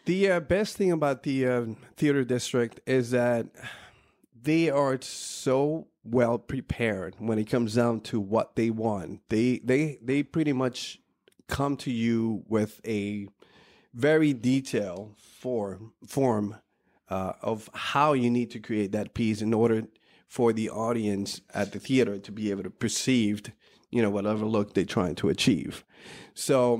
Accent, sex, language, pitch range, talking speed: American, male, English, 110-135 Hz, 155 wpm